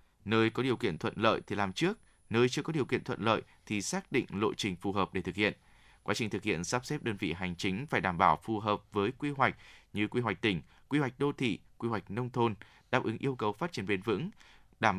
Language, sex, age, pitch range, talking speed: Vietnamese, male, 20-39, 100-130 Hz, 260 wpm